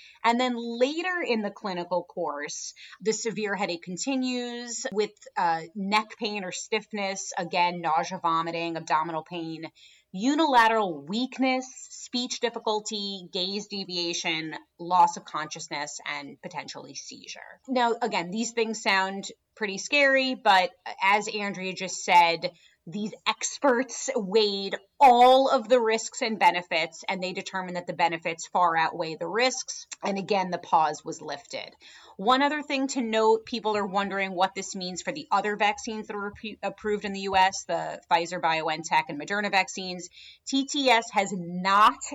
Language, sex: English, female